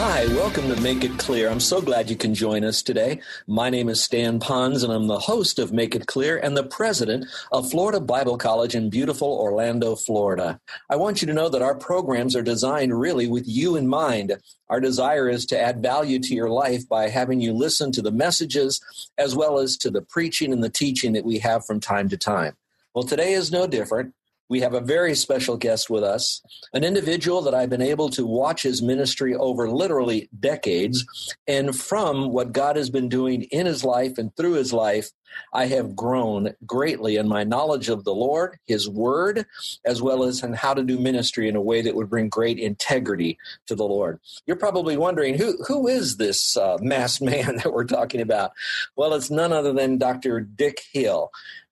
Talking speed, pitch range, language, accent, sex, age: 210 wpm, 115-145 Hz, English, American, male, 50-69